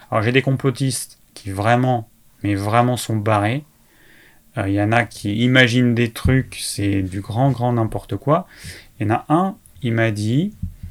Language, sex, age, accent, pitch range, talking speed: French, male, 30-49, French, 105-130 Hz, 180 wpm